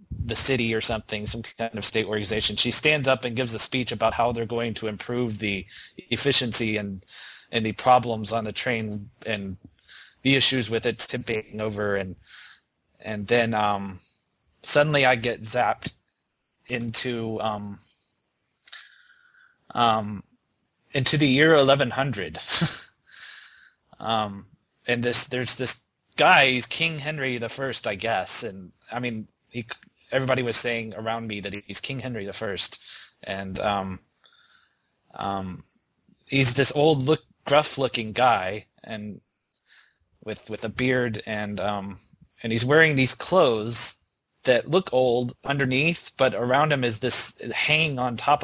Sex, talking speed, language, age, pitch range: male, 140 wpm, English, 20-39, 110-130 Hz